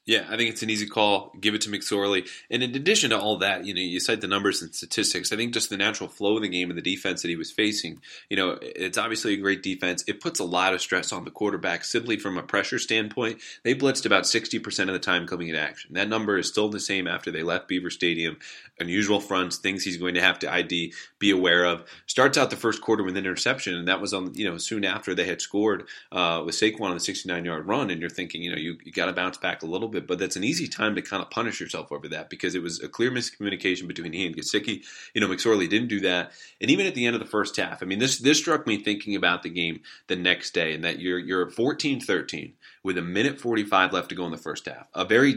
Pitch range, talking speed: 90-110 Hz, 270 wpm